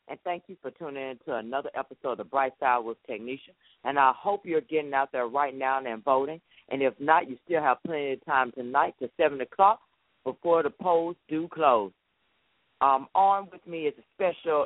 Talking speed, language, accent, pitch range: 205 wpm, English, American, 125-165 Hz